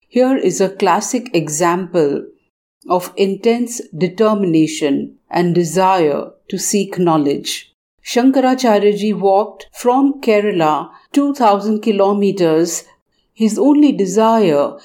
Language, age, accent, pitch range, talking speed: Hindi, 50-69, native, 180-225 Hz, 95 wpm